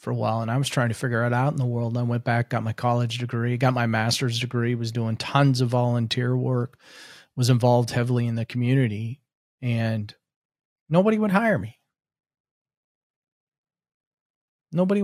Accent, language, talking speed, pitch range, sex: American, English, 175 wpm, 120-145 Hz, male